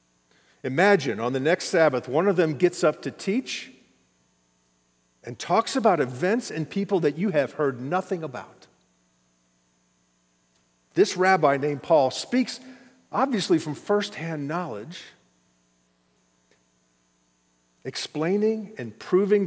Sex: male